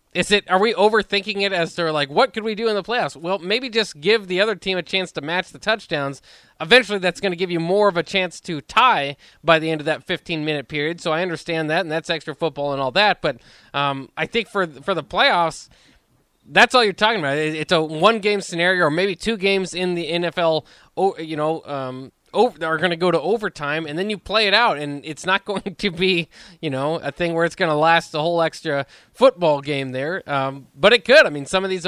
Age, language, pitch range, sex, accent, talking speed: 20-39, English, 150-190 Hz, male, American, 240 wpm